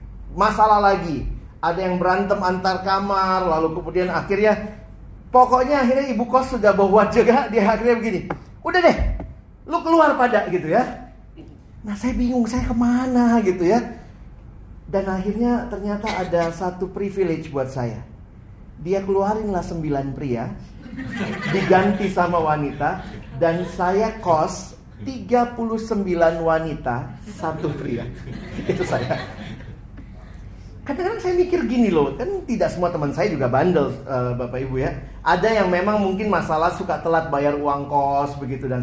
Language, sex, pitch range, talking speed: Indonesian, male, 160-255 Hz, 140 wpm